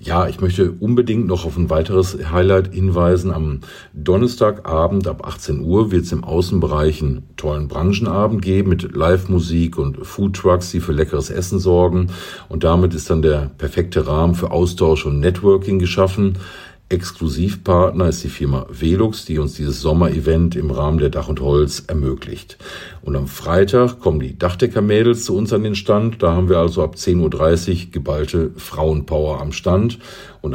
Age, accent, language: 50-69, German, German